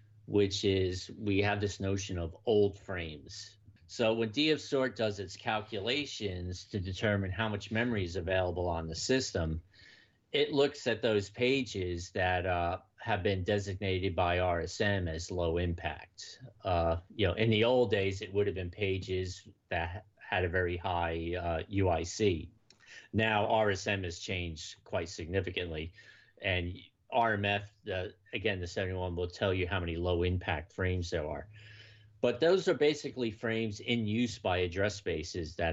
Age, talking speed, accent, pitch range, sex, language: 40-59, 155 wpm, American, 90-105 Hz, male, English